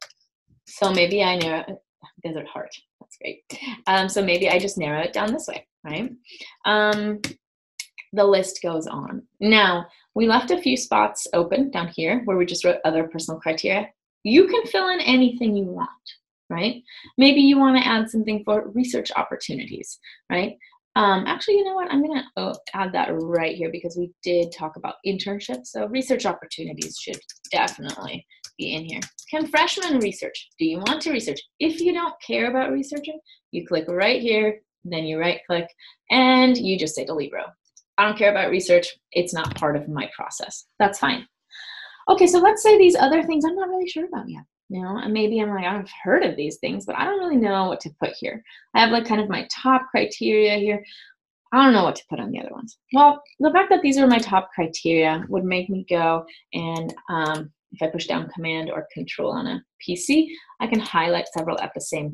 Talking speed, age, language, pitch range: 200 wpm, 20-39, English, 175-270 Hz